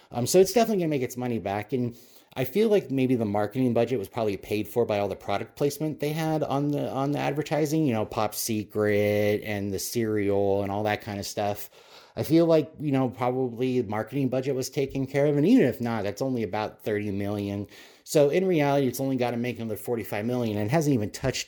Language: English